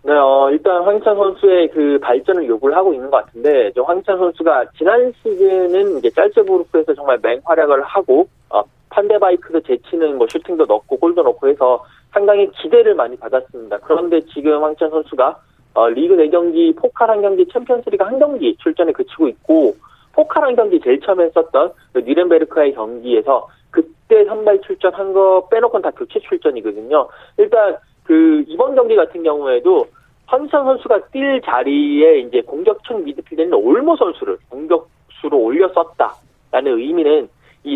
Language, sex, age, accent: Korean, male, 30-49, native